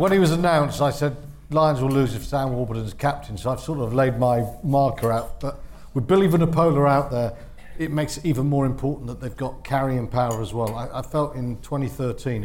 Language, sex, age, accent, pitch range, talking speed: English, male, 50-69, British, 120-145 Hz, 220 wpm